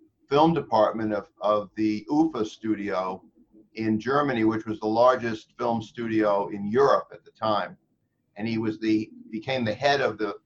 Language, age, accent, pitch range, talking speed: English, 50-69, American, 110-135 Hz, 165 wpm